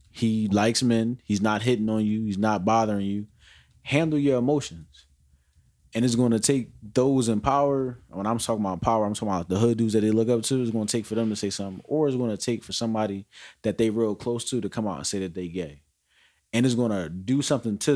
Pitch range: 95-120 Hz